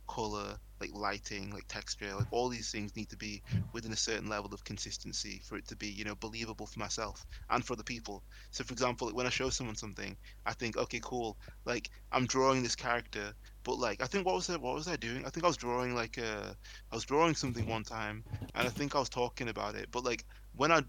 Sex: male